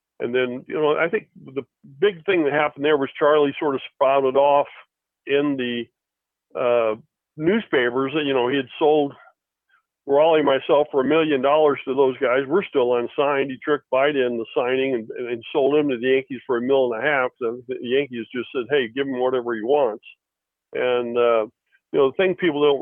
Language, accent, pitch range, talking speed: English, American, 130-150 Hz, 210 wpm